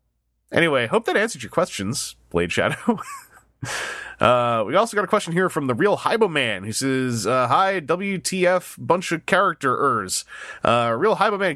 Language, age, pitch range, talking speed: English, 30-49, 125-190 Hz, 170 wpm